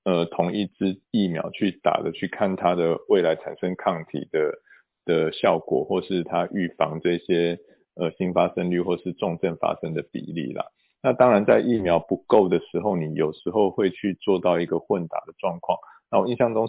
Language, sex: Chinese, male